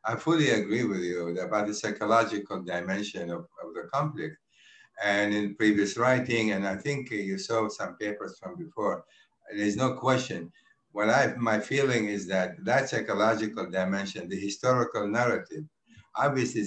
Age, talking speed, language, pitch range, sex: 60-79, 150 wpm, English, 105-130 Hz, male